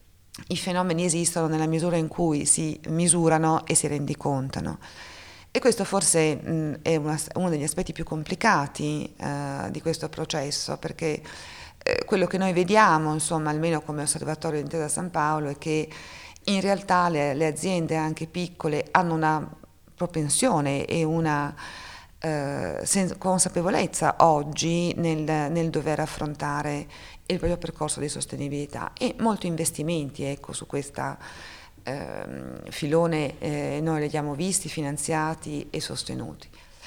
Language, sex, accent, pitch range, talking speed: Italian, female, native, 145-165 Hz, 135 wpm